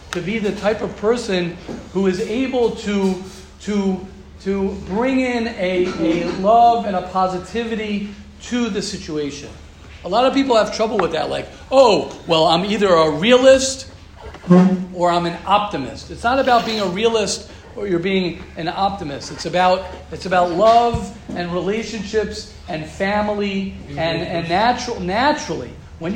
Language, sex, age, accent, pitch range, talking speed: English, male, 40-59, American, 180-230 Hz, 155 wpm